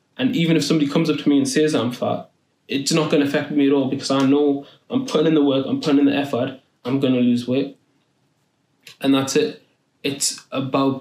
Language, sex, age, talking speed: English, male, 20-39, 235 wpm